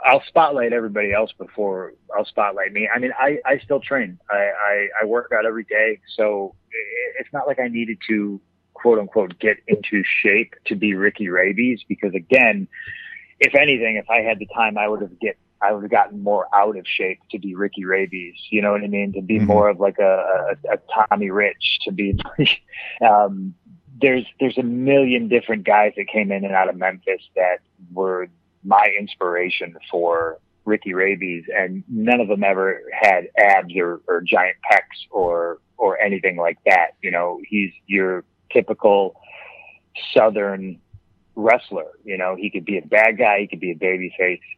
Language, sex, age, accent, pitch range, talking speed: English, male, 30-49, American, 95-115 Hz, 185 wpm